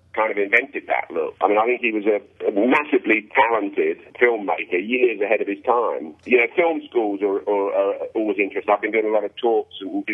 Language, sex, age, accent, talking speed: English, male, 40-59, British, 230 wpm